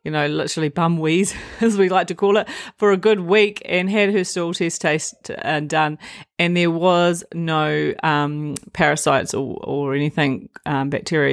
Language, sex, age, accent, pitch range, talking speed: English, female, 30-49, Australian, 145-175 Hz, 180 wpm